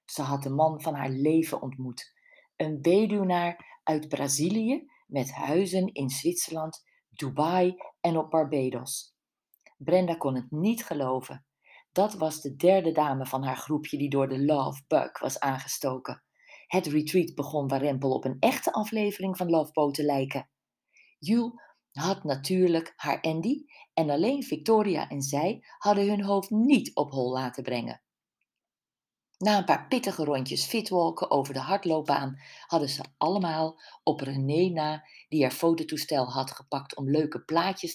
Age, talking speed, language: 40-59, 150 wpm, Dutch